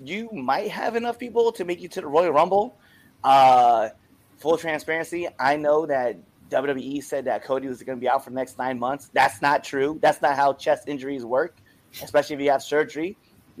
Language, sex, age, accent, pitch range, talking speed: English, male, 30-49, American, 130-160 Hz, 205 wpm